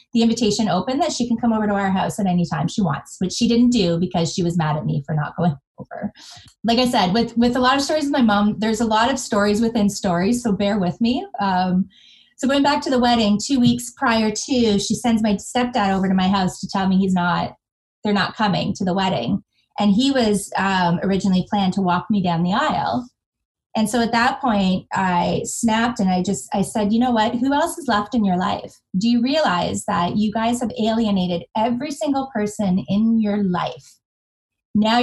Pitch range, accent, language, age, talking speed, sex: 185-235 Hz, American, English, 20-39, 225 wpm, female